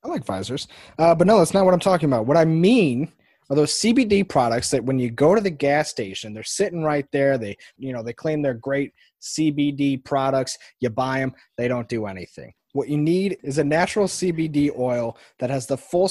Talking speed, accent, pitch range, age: 220 wpm, American, 130-160 Hz, 20-39